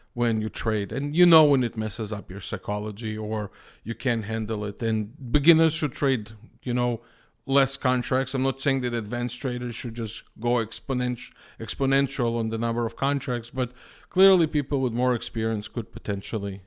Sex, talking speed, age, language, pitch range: male, 175 wpm, 40-59, English, 110-145 Hz